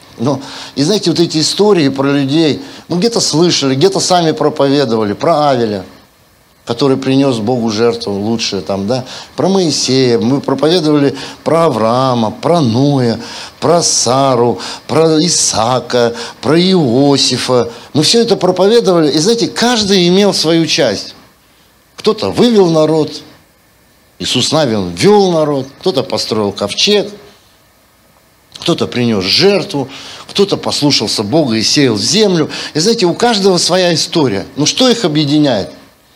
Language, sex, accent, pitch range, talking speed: Russian, male, native, 120-180 Hz, 125 wpm